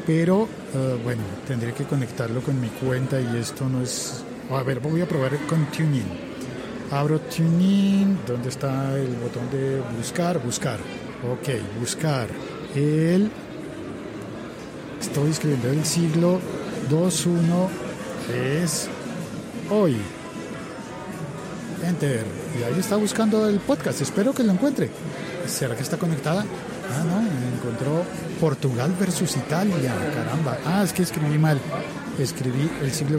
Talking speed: 130 wpm